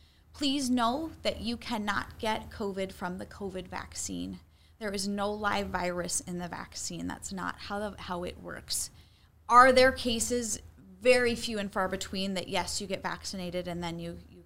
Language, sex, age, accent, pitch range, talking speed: English, female, 30-49, American, 180-245 Hz, 180 wpm